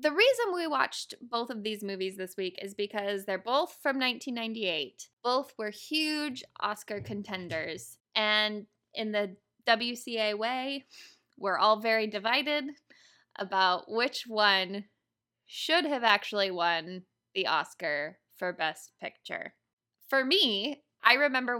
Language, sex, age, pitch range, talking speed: English, female, 10-29, 190-235 Hz, 130 wpm